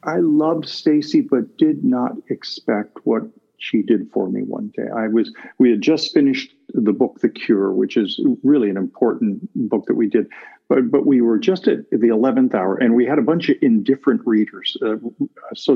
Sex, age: male, 50-69